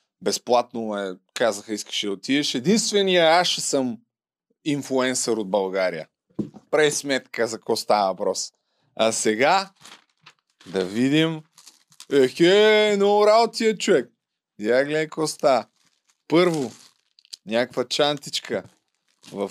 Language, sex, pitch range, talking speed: Bulgarian, male, 130-180 Hz, 100 wpm